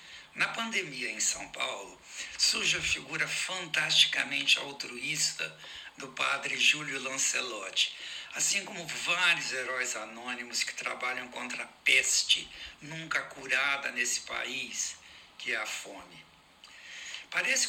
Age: 60-79